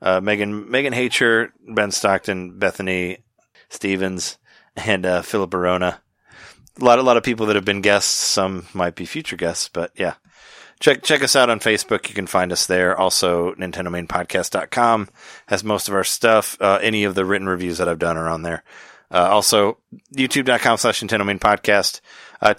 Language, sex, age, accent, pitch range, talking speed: English, male, 30-49, American, 90-115 Hz, 180 wpm